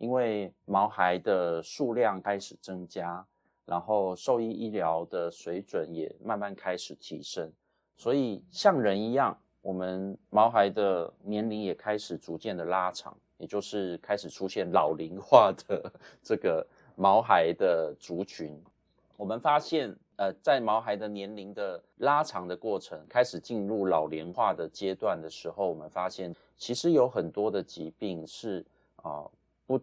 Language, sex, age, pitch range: Chinese, male, 30-49, 90-110 Hz